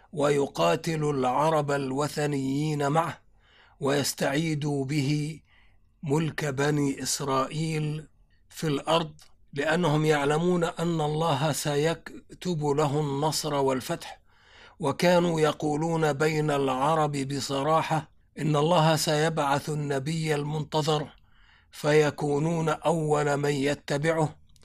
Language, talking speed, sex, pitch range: Arabic, 80 wpm, male, 140-155 Hz